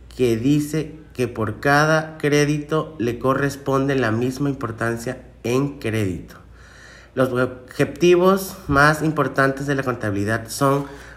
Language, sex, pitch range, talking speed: Spanish, male, 120-145 Hz, 115 wpm